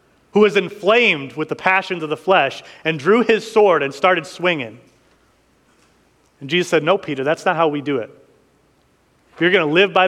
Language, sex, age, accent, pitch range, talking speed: English, male, 30-49, American, 145-200 Hz, 195 wpm